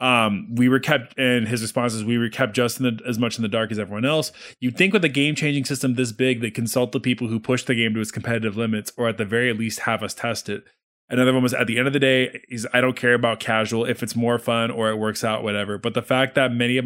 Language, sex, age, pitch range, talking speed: English, male, 20-39, 115-150 Hz, 285 wpm